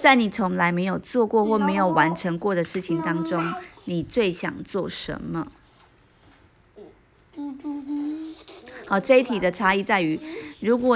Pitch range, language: 175-245 Hz, Chinese